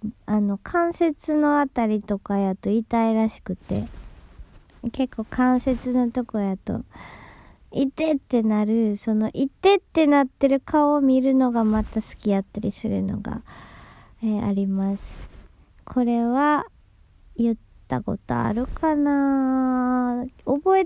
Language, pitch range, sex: Japanese, 210-275 Hz, male